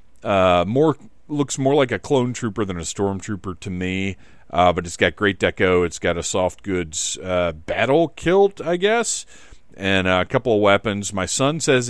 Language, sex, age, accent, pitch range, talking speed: English, male, 40-59, American, 90-115 Hz, 190 wpm